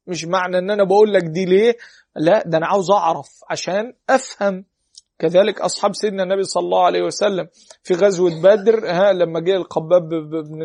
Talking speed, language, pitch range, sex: 175 wpm, Arabic, 165-200 Hz, male